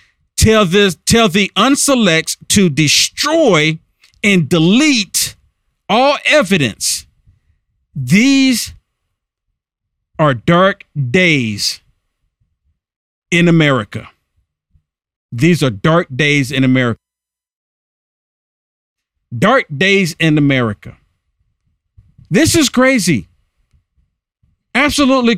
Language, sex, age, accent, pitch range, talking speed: English, male, 50-69, American, 150-235 Hz, 75 wpm